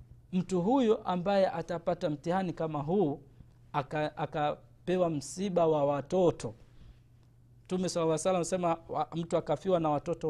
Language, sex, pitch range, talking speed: Swahili, male, 135-190 Hz, 130 wpm